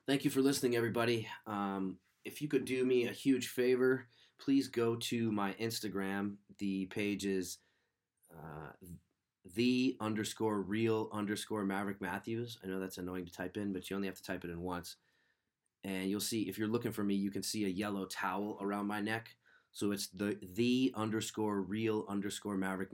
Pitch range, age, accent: 95-115 Hz, 30-49, American